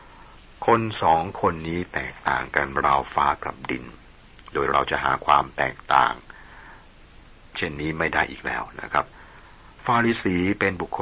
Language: Thai